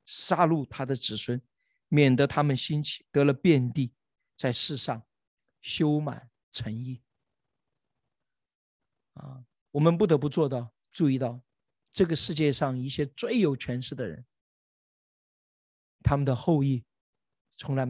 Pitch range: 120-145 Hz